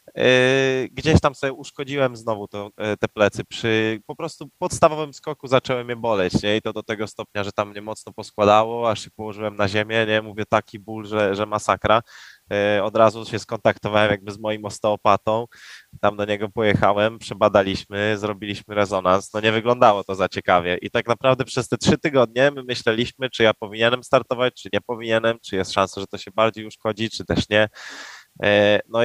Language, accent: Polish, native